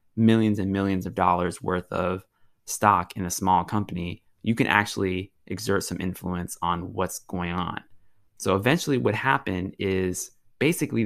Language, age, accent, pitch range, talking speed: English, 20-39, American, 90-110 Hz, 150 wpm